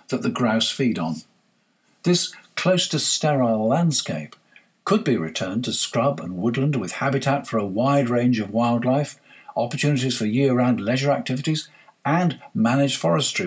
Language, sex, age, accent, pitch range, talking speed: English, male, 50-69, British, 115-155 Hz, 150 wpm